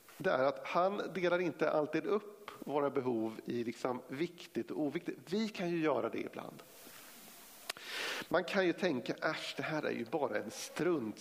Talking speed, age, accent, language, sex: 175 wpm, 50-69, native, Swedish, male